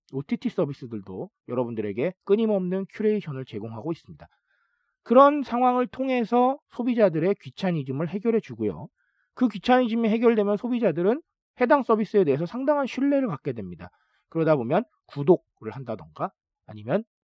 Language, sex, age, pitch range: Korean, male, 40-59, 145-225 Hz